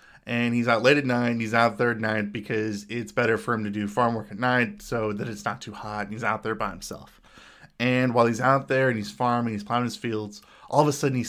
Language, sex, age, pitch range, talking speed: English, male, 20-39, 110-125 Hz, 275 wpm